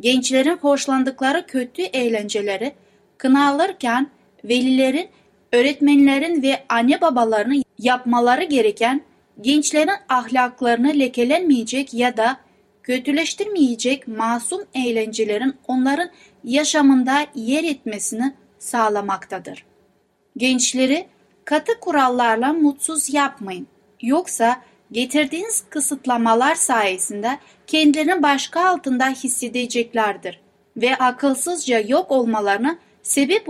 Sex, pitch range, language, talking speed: female, 235-295 Hz, Turkish, 75 wpm